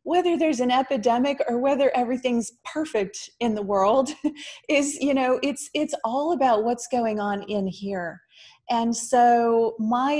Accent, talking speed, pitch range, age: American, 155 wpm, 195-250 Hz, 30-49